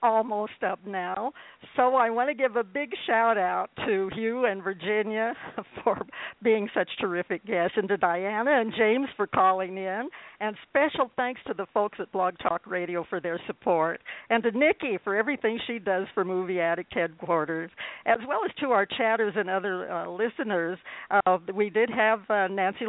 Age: 60-79